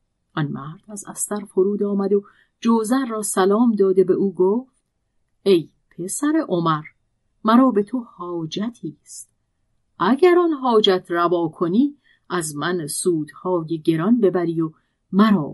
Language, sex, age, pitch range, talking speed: Persian, female, 40-59, 165-235 Hz, 130 wpm